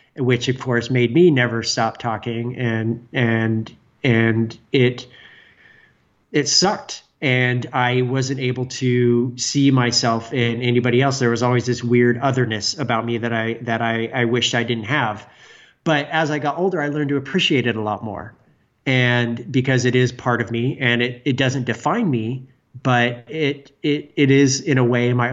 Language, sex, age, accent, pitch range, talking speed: English, male, 30-49, American, 115-135 Hz, 180 wpm